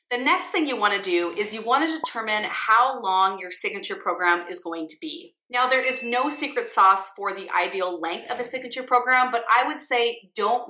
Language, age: English, 30-49